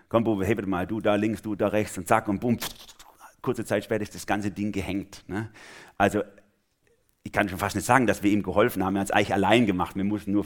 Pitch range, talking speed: 95-115 Hz, 245 wpm